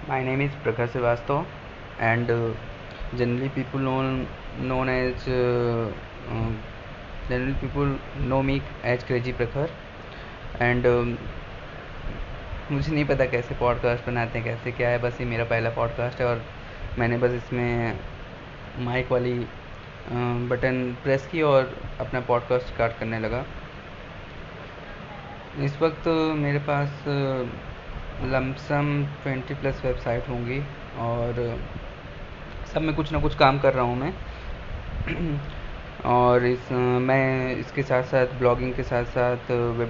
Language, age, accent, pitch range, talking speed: Hindi, 20-39, native, 115-130 Hz, 120 wpm